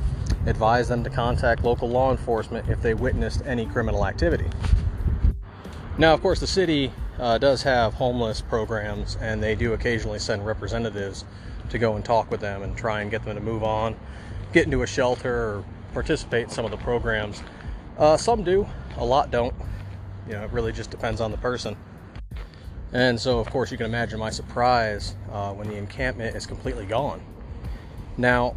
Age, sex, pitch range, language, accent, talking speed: 30-49, male, 100-120 Hz, English, American, 180 wpm